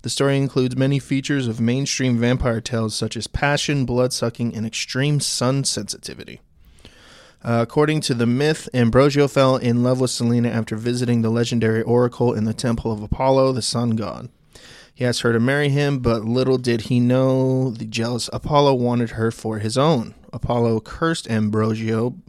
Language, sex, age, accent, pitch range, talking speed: English, male, 20-39, American, 115-135 Hz, 170 wpm